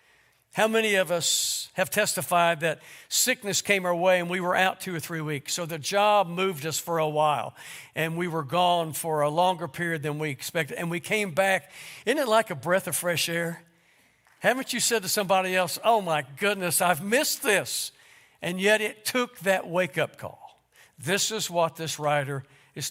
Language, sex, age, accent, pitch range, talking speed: English, male, 60-79, American, 150-210 Hz, 195 wpm